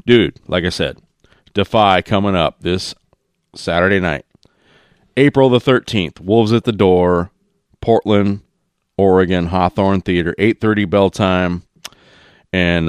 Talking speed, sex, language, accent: 115 wpm, male, English, American